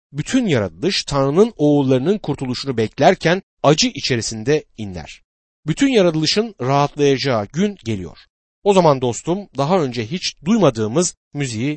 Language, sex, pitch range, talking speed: Turkish, male, 120-175 Hz, 110 wpm